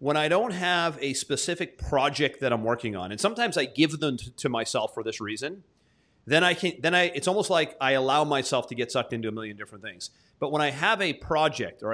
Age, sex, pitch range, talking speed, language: 30-49, male, 125-170 Hz, 240 wpm, English